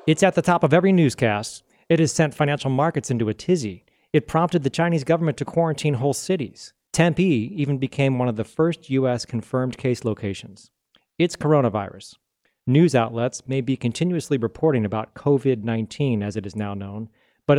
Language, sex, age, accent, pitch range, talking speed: English, male, 40-59, American, 115-155 Hz, 175 wpm